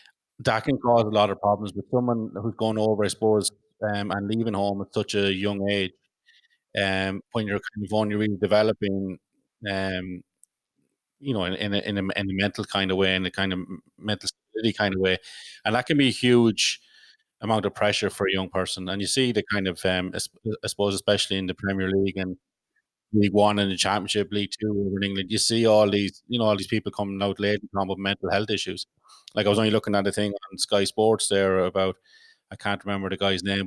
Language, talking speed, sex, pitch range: English, 230 wpm, male, 95-105 Hz